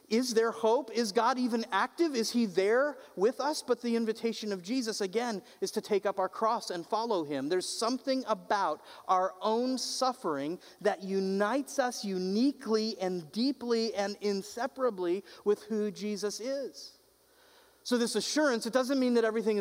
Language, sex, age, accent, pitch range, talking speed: English, male, 40-59, American, 185-240 Hz, 160 wpm